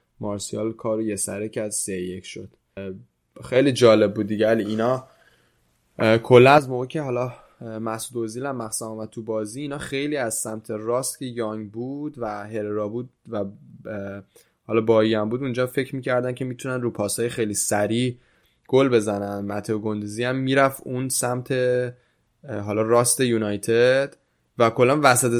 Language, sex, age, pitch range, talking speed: Persian, male, 10-29, 105-125 Hz, 160 wpm